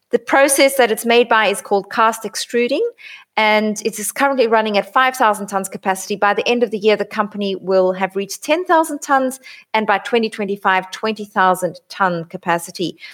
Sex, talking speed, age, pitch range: female, 175 wpm, 30-49, 195-245 Hz